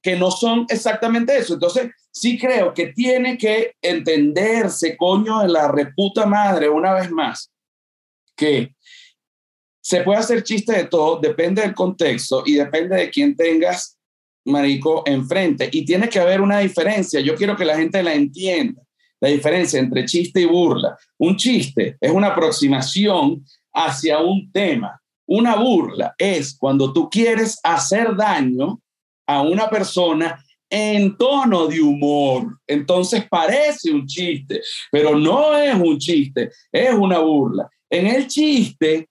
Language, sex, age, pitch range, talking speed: Spanish, male, 40-59, 160-225 Hz, 145 wpm